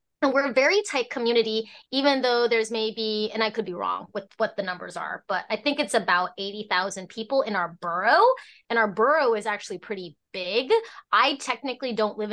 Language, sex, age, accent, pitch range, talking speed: English, female, 20-39, American, 205-285 Hz, 200 wpm